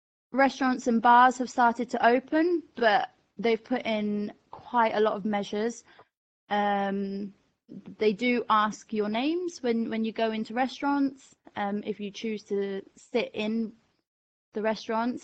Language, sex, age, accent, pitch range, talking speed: English, female, 20-39, British, 205-240 Hz, 145 wpm